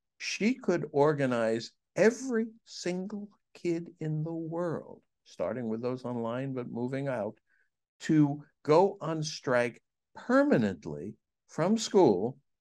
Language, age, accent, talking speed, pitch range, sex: English, 60-79, American, 110 wpm, 120-175 Hz, male